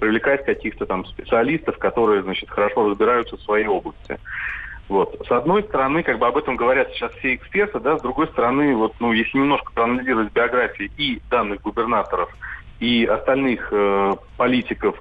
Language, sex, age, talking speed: Russian, male, 30-49, 160 wpm